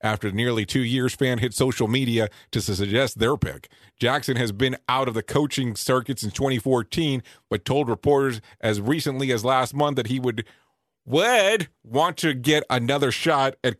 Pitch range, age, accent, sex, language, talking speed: 110-140 Hz, 40-59, American, male, English, 175 wpm